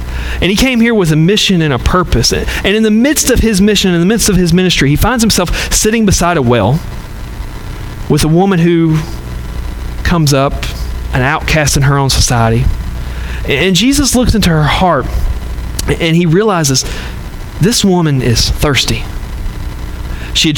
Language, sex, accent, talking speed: English, male, American, 165 wpm